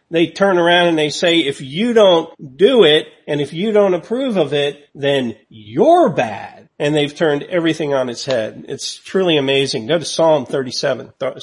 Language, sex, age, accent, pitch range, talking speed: English, male, 40-59, American, 140-175 Hz, 190 wpm